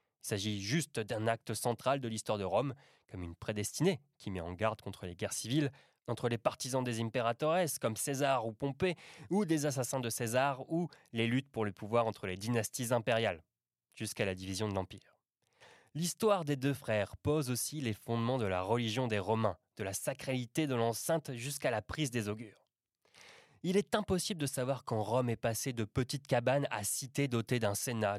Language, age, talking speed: French, 20-39, 190 wpm